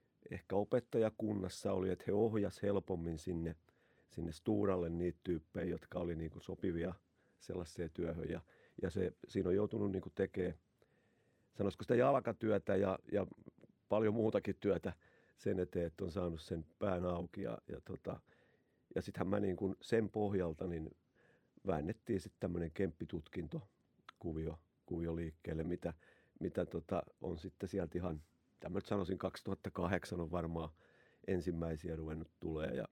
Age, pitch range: 50-69, 85-105 Hz